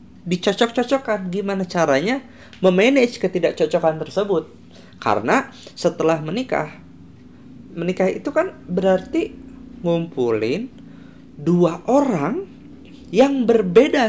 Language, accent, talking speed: Indonesian, native, 75 wpm